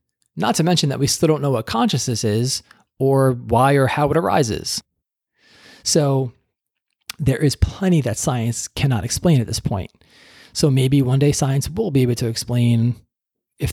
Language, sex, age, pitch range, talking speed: English, male, 20-39, 115-140 Hz, 170 wpm